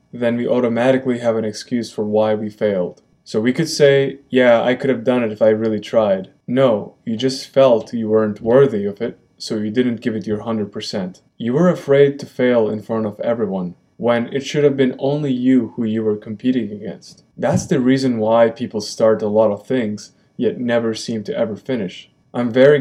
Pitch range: 110-140 Hz